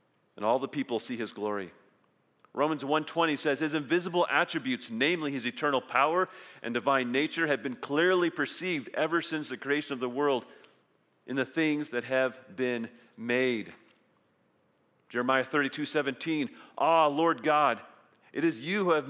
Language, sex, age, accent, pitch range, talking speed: English, male, 40-59, American, 130-160 Hz, 150 wpm